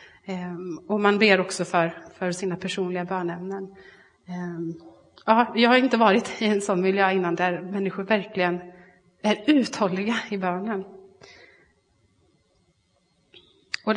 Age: 30-49